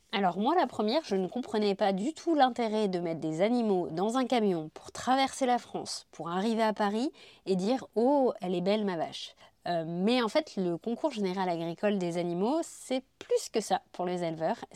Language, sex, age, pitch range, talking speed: French, female, 30-49, 180-235 Hz, 215 wpm